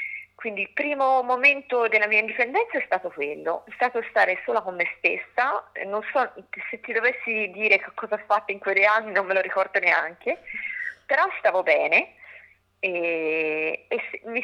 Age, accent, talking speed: 30-49, native, 170 wpm